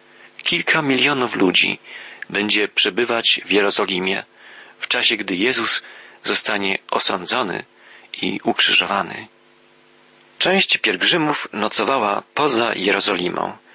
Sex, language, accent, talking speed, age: male, Polish, native, 85 wpm, 40-59